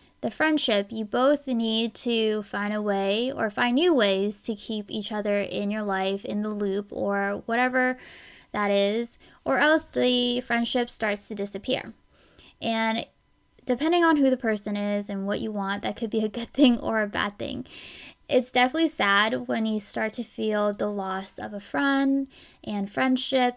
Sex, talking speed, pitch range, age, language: female, 180 wpm, 205-245 Hz, 10-29, English